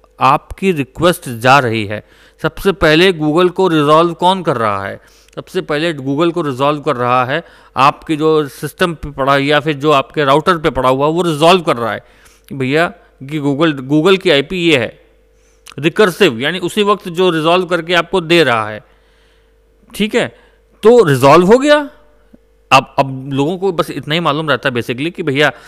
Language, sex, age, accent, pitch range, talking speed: Hindi, male, 40-59, native, 140-180 Hz, 180 wpm